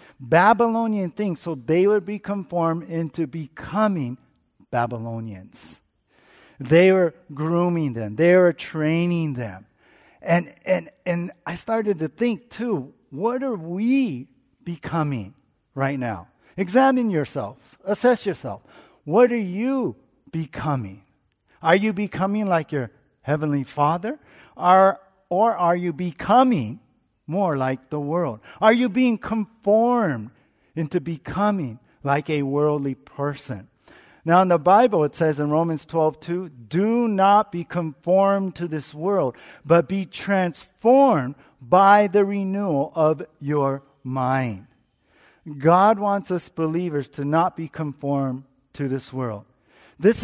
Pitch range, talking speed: 140-200 Hz, 125 wpm